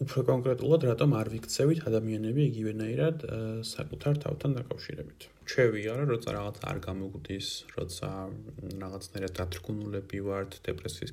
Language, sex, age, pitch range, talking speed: English, male, 30-49, 100-130 Hz, 140 wpm